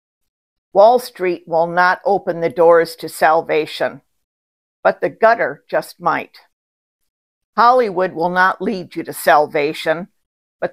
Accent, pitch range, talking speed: American, 160-215 Hz, 125 wpm